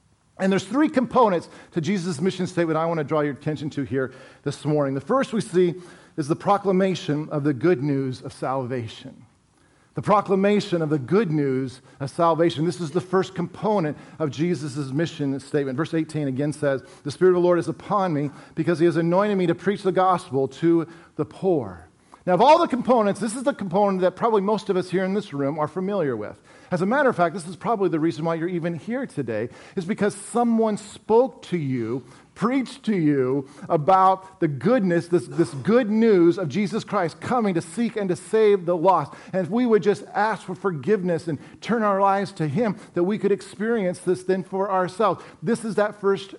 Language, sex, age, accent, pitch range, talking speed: English, male, 50-69, American, 155-200 Hz, 210 wpm